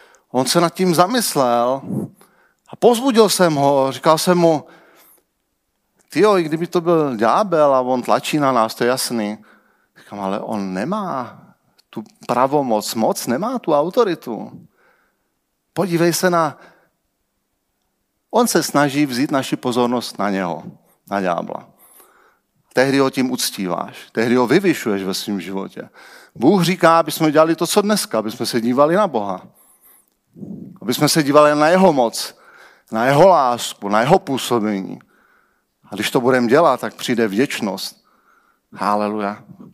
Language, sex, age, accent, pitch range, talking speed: Czech, male, 40-59, native, 125-170 Hz, 140 wpm